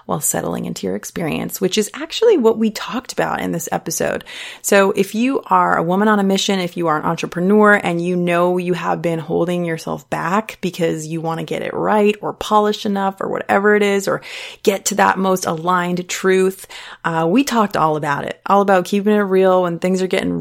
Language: English